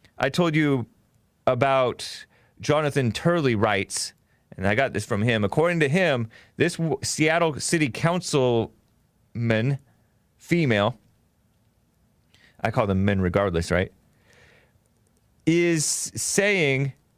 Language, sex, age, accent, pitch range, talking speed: English, male, 30-49, American, 100-140 Hz, 100 wpm